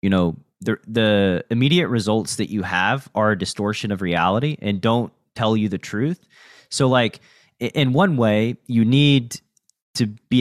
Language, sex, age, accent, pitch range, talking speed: English, male, 30-49, American, 105-130 Hz, 165 wpm